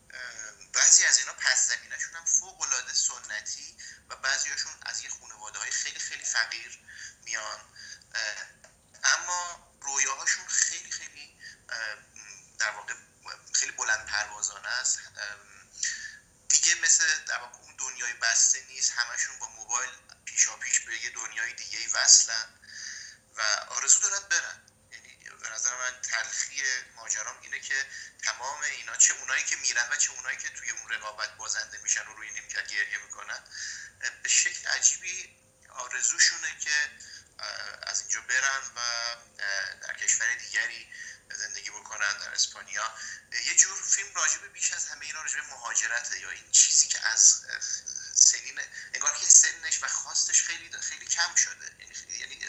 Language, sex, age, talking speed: Persian, male, 30-49, 135 wpm